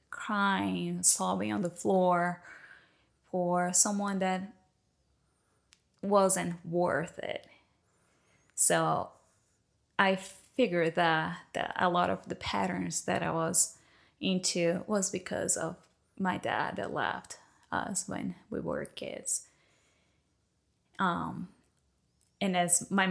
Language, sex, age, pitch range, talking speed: Filipino, female, 10-29, 170-195 Hz, 105 wpm